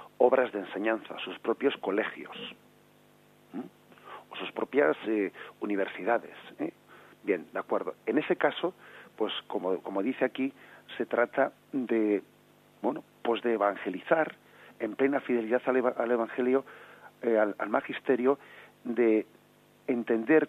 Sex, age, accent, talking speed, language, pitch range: male, 40-59, Spanish, 120 wpm, Spanish, 115-135 Hz